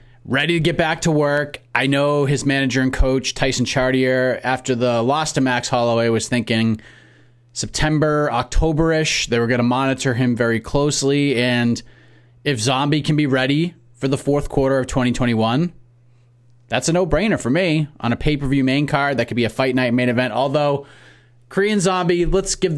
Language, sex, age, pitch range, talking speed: English, male, 30-49, 120-145 Hz, 175 wpm